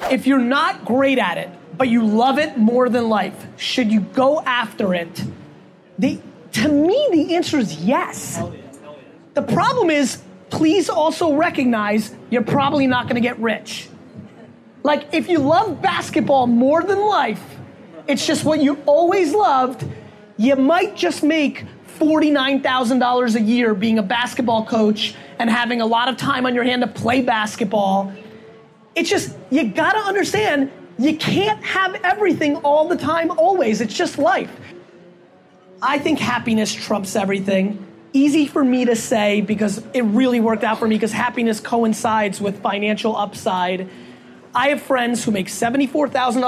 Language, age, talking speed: English, 30-49, 150 wpm